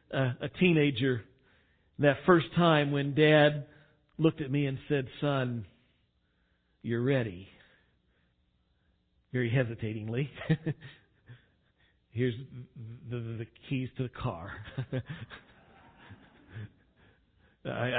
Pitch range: 125-185 Hz